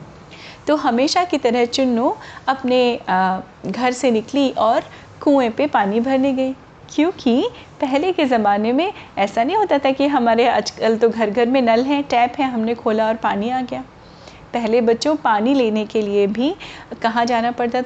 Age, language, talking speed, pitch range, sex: 30-49, Hindi, 175 wpm, 210-270 Hz, female